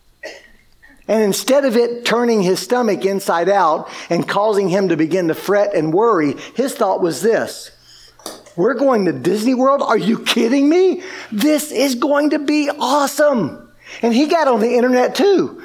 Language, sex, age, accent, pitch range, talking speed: English, male, 50-69, American, 205-270 Hz, 170 wpm